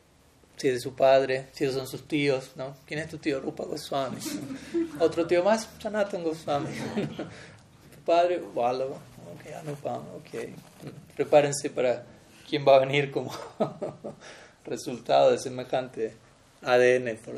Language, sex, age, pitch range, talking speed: Spanish, male, 30-49, 125-150 Hz, 135 wpm